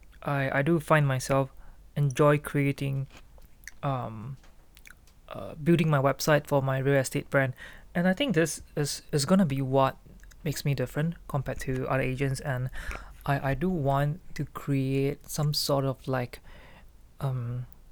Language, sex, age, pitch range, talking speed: English, male, 20-39, 130-150 Hz, 150 wpm